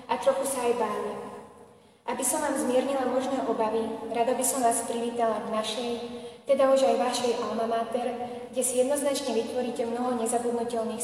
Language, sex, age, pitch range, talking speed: Slovak, female, 20-39, 225-255 Hz, 165 wpm